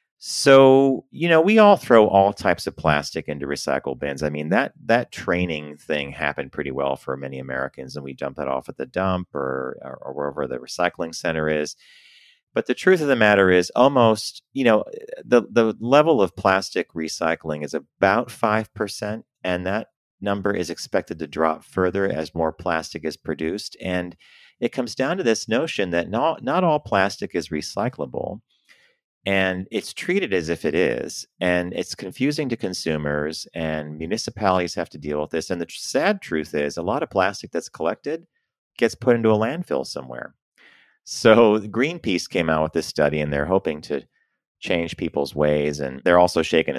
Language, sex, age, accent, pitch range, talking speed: English, male, 40-59, American, 75-105 Hz, 180 wpm